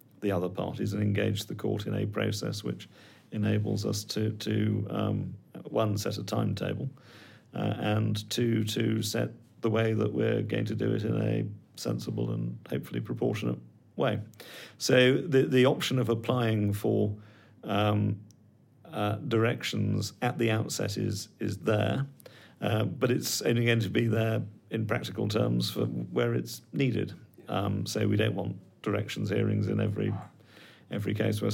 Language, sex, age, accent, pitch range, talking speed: English, male, 40-59, British, 105-115 Hz, 160 wpm